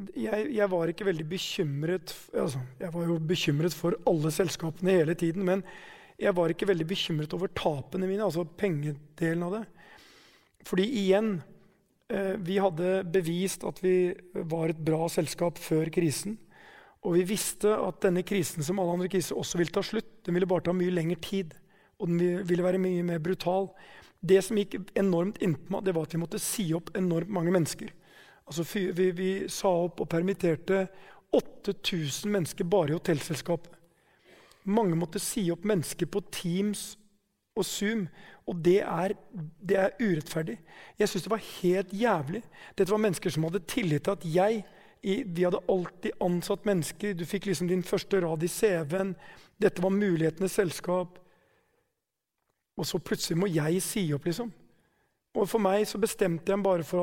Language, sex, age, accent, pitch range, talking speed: English, male, 30-49, Swedish, 170-200 Hz, 165 wpm